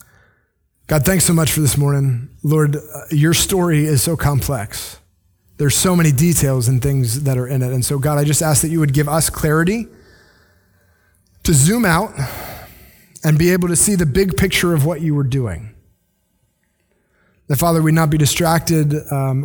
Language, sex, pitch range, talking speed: English, male, 115-155 Hz, 180 wpm